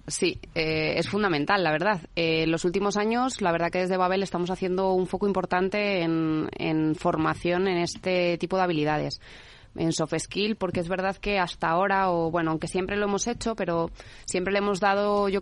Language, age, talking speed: Spanish, 20-39, 200 wpm